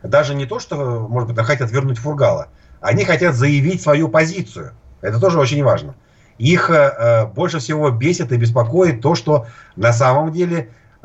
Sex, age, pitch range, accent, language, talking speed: male, 50-69, 115-150 Hz, native, Russian, 160 wpm